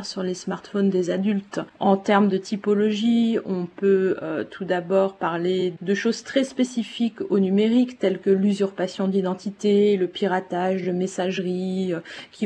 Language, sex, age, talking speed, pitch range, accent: French, female, 30-49, 150 wpm, 180-210 Hz, French